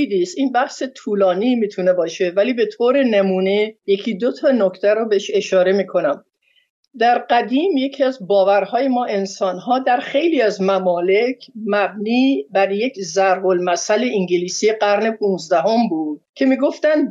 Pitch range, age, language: 195-260 Hz, 50-69, Persian